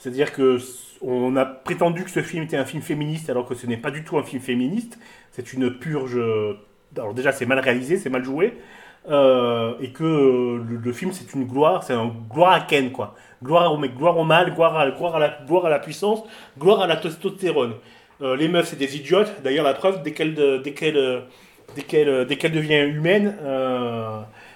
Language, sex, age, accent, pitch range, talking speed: French, male, 30-49, French, 130-170 Hz, 215 wpm